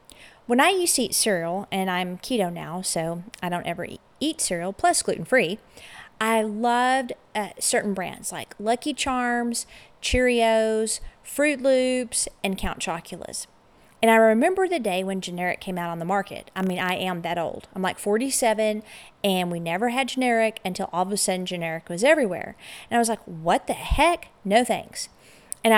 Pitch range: 185-255 Hz